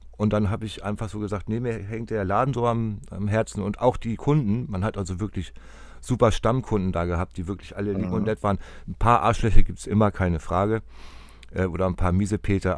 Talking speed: 225 wpm